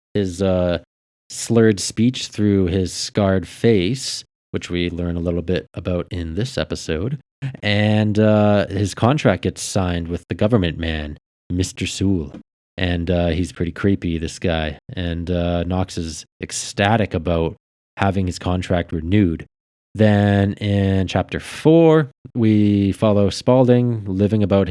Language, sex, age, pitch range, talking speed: English, male, 20-39, 85-110 Hz, 135 wpm